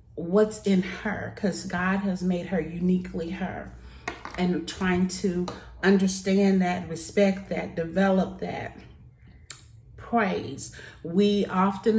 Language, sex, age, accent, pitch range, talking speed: English, female, 40-59, American, 165-205 Hz, 110 wpm